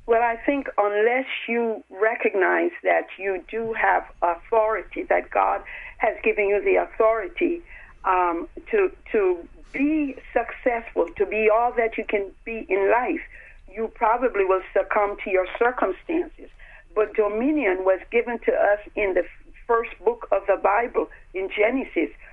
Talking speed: 145 wpm